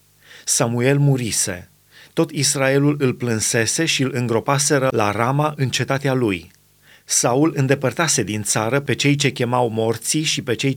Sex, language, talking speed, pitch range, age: male, Romanian, 145 wpm, 120-145 Hz, 30-49